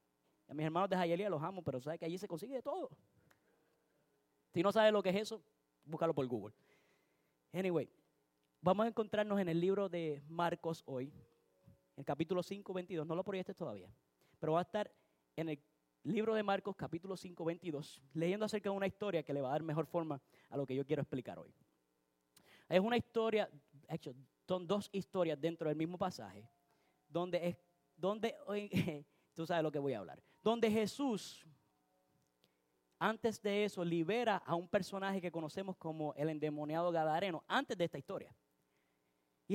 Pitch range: 155-215 Hz